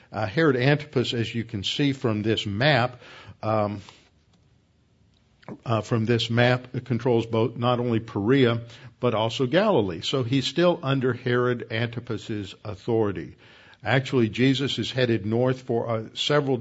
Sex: male